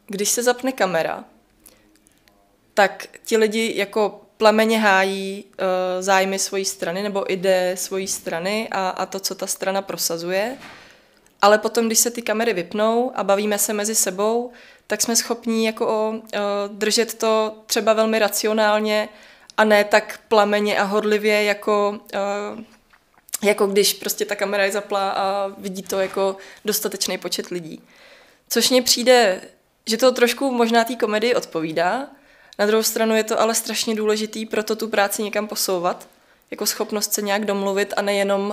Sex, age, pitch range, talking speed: female, 20-39, 190-220 Hz, 155 wpm